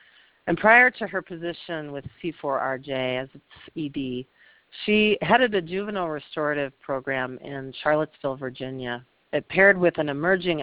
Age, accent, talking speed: 50-69, American, 135 wpm